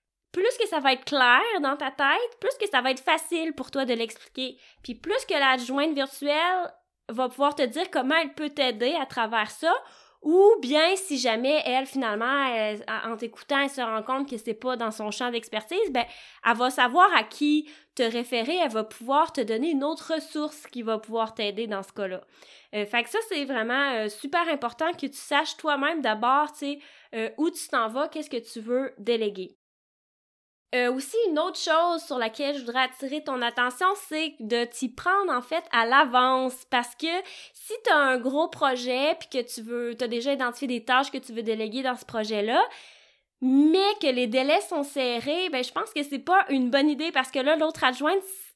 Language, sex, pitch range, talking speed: French, female, 240-315 Hz, 205 wpm